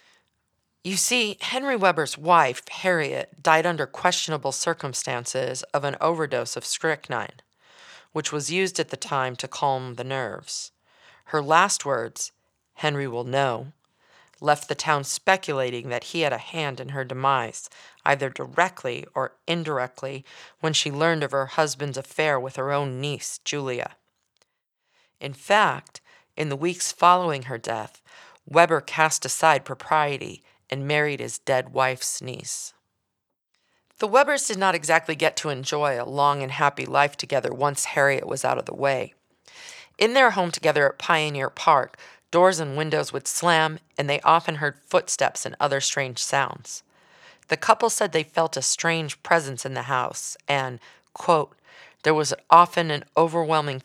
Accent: American